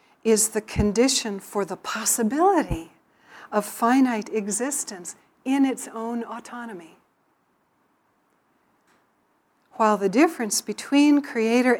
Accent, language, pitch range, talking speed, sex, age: American, English, 200-240 Hz, 90 wpm, female, 60-79